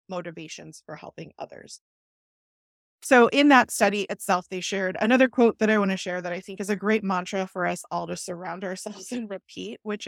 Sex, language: female, English